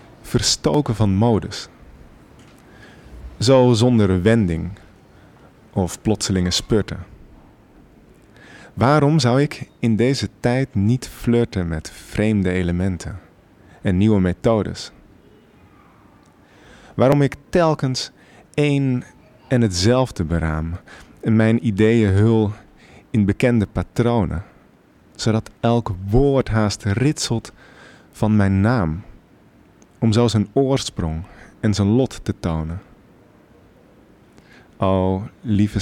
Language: Dutch